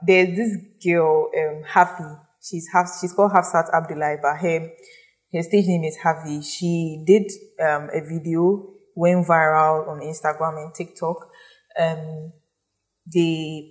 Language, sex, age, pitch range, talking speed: English, female, 10-29, 160-190 Hz, 135 wpm